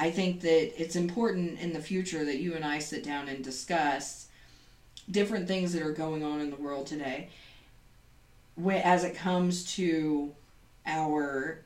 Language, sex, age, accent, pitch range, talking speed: English, female, 40-59, American, 145-185 Hz, 160 wpm